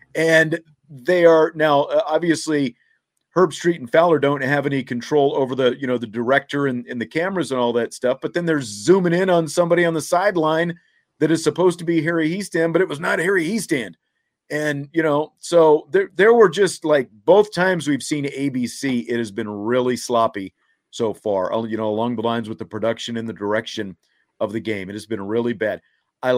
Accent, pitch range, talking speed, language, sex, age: American, 125-150 Hz, 210 wpm, English, male, 40-59